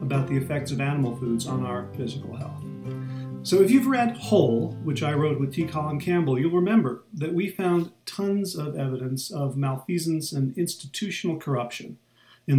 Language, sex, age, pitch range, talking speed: English, male, 40-59, 125-160 Hz, 170 wpm